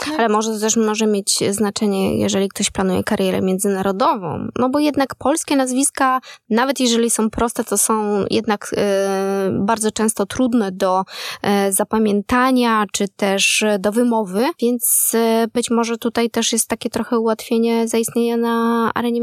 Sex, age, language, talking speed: female, 20-39, Polish, 145 wpm